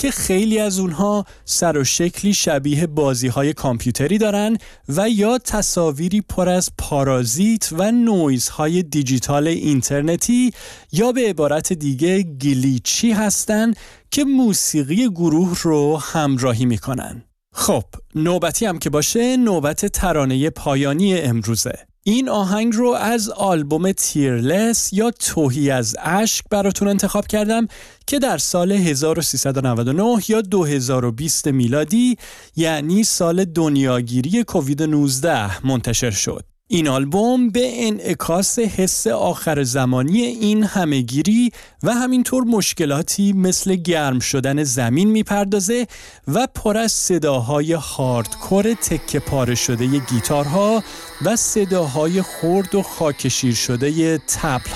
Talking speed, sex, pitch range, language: 115 wpm, male, 140-210 Hz, Persian